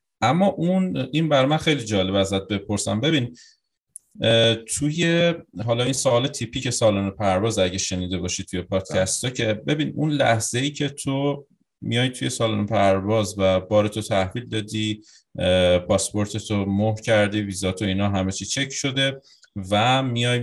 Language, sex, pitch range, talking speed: Persian, male, 100-130 Hz, 145 wpm